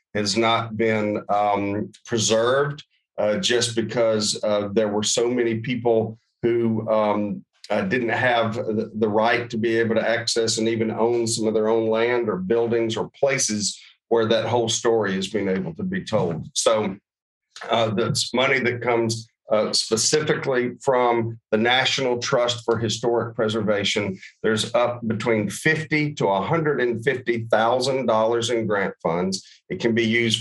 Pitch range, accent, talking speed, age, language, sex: 110-125 Hz, American, 150 wpm, 50-69, English, male